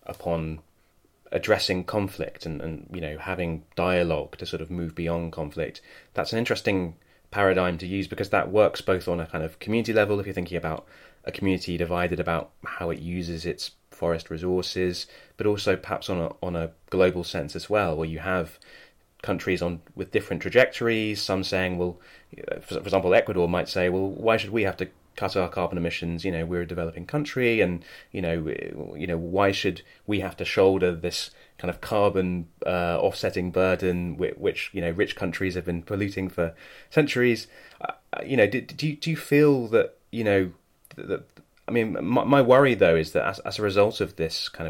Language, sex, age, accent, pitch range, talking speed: English, male, 20-39, British, 85-100 Hz, 195 wpm